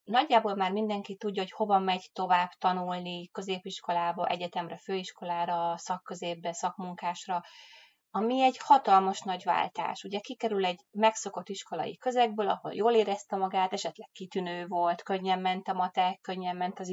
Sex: female